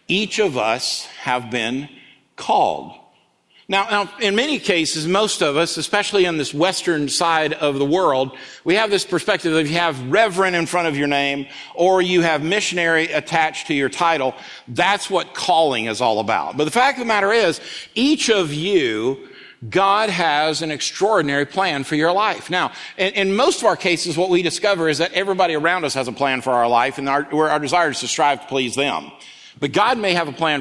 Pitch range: 135-180 Hz